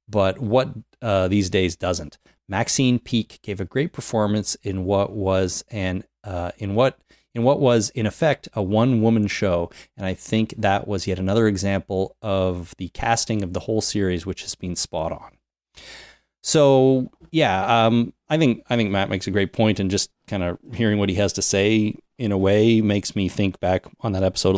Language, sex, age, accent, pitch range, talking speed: English, male, 30-49, American, 95-125 Hz, 195 wpm